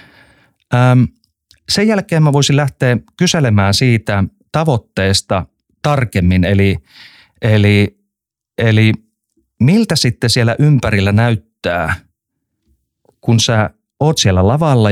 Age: 30-49